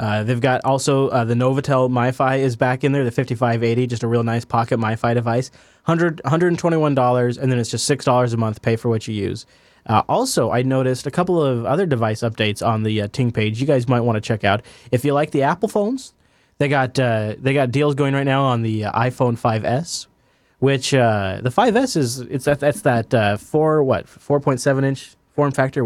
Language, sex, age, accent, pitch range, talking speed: English, male, 20-39, American, 110-135 Hz, 215 wpm